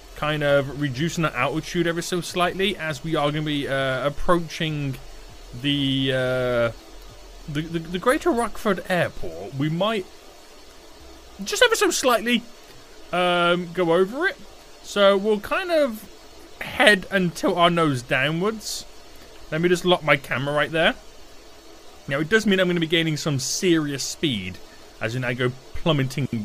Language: English